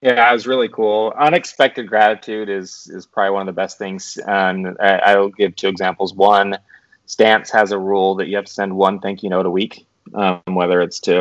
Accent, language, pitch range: American, English, 95-110 Hz